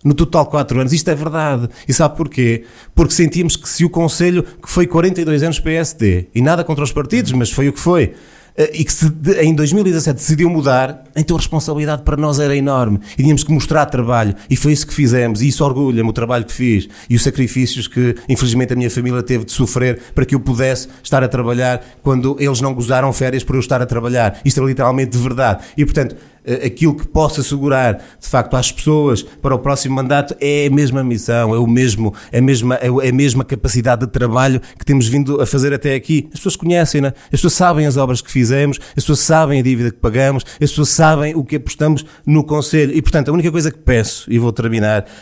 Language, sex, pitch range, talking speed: Portuguese, male, 120-150 Hz, 225 wpm